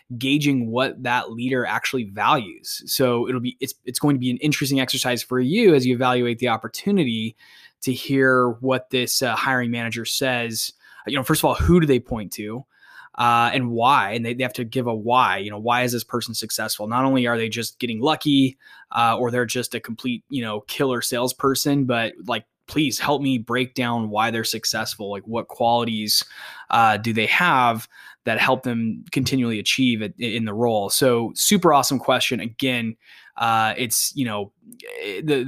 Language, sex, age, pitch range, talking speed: English, male, 10-29, 115-135 Hz, 190 wpm